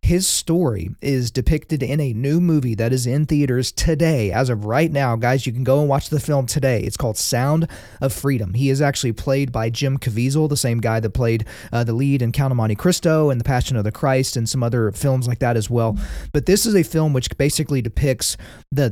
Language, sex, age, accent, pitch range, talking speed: English, male, 30-49, American, 120-145 Hz, 235 wpm